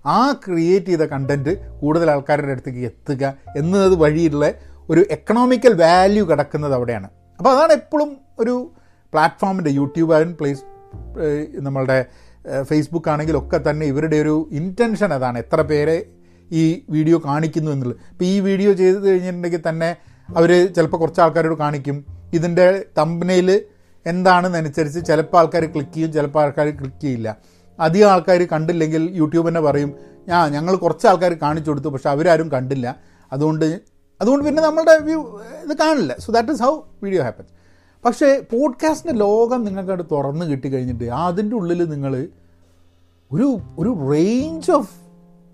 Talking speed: 130 wpm